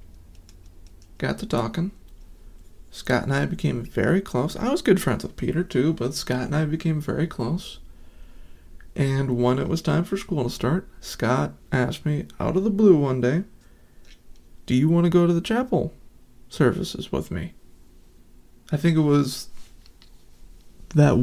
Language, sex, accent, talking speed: English, male, American, 160 wpm